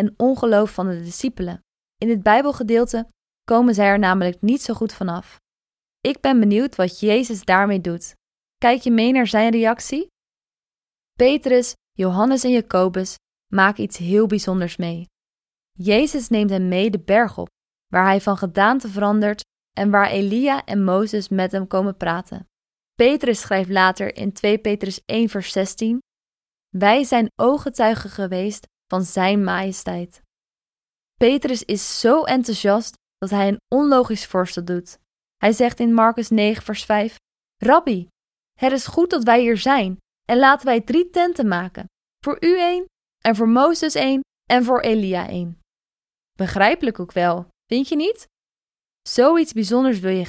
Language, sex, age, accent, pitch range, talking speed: Dutch, female, 20-39, Dutch, 195-245 Hz, 150 wpm